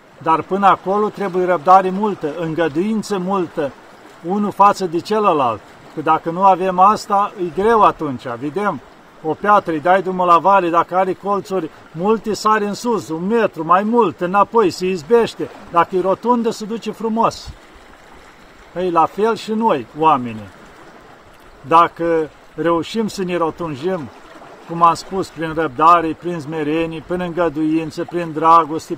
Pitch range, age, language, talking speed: 165-200 Hz, 50-69, Romanian, 145 wpm